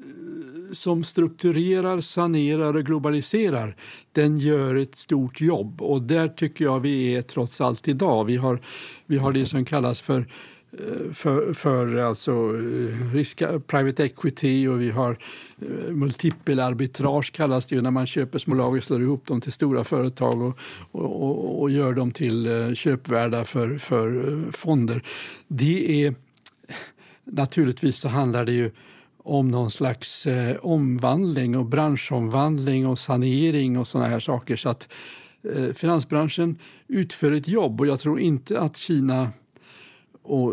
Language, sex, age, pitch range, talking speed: Swedish, male, 60-79, 125-155 Hz, 145 wpm